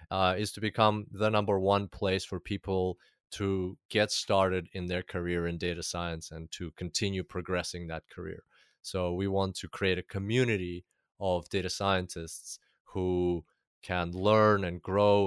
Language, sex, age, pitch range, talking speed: English, male, 20-39, 90-100 Hz, 155 wpm